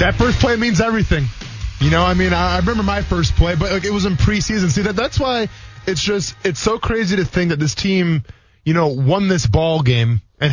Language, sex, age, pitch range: English, male, 20-39, 130-175 Hz